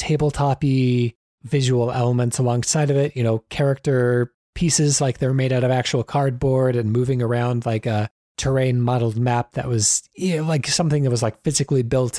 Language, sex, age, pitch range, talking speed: English, male, 30-49, 120-155 Hz, 175 wpm